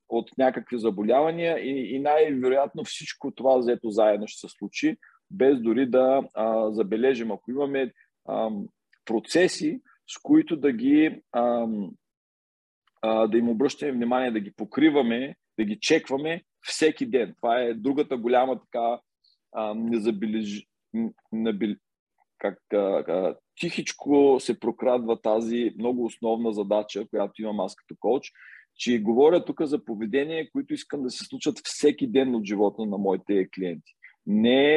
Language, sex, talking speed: Bulgarian, male, 130 wpm